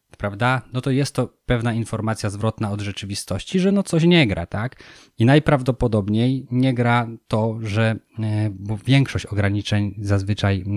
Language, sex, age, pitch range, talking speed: Polish, male, 20-39, 105-125 Hz, 140 wpm